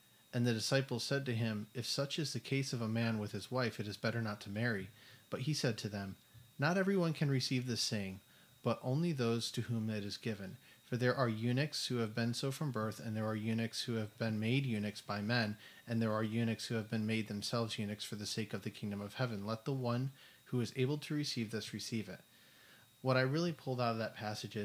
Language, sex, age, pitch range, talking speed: English, male, 30-49, 110-125 Hz, 245 wpm